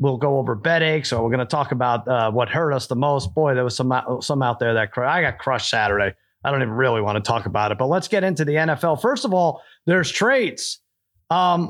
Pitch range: 125-200 Hz